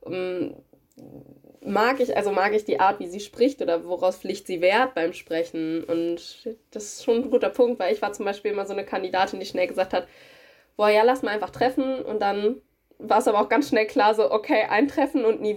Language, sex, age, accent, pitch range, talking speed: English, female, 20-39, German, 195-255 Hz, 225 wpm